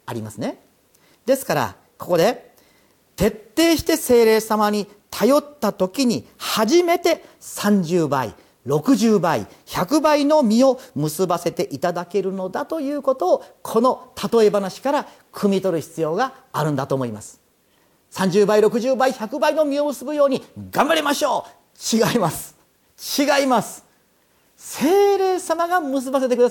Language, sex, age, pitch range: Japanese, male, 40-59, 175-270 Hz